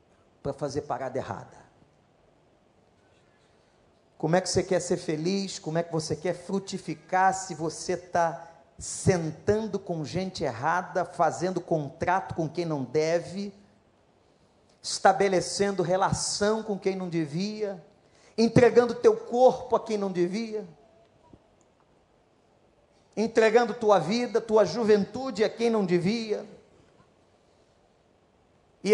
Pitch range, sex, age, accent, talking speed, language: 180-230 Hz, male, 50-69, Brazilian, 110 wpm, Portuguese